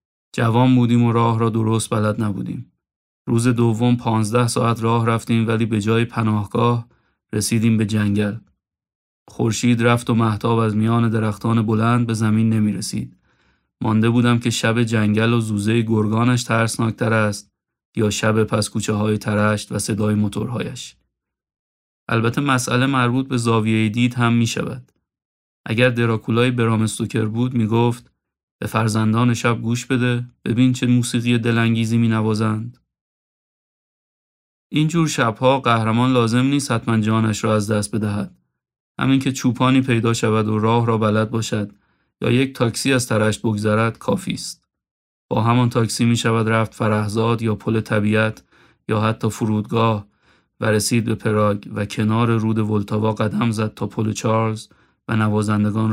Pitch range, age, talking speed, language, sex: 110-120 Hz, 30-49, 145 wpm, Persian, male